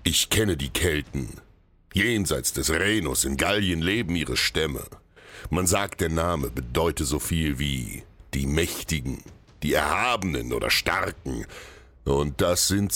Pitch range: 75-95 Hz